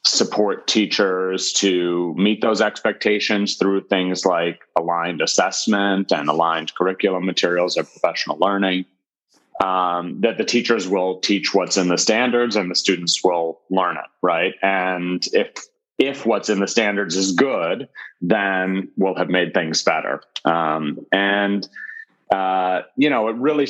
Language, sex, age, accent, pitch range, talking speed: English, male, 30-49, American, 90-105 Hz, 145 wpm